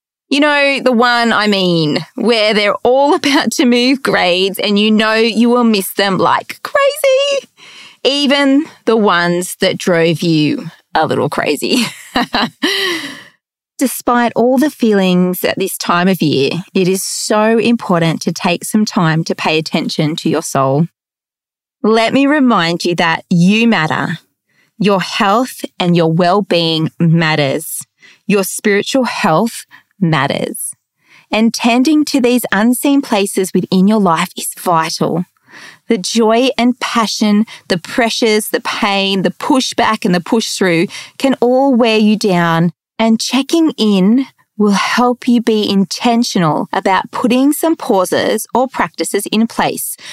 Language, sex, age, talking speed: English, female, 20-39, 140 wpm